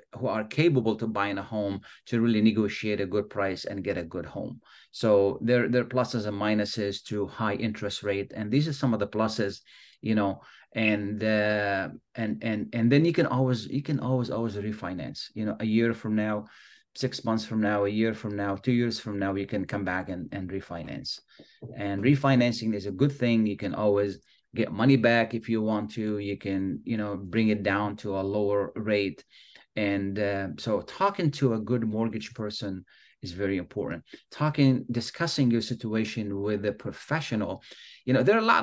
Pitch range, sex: 105-125 Hz, male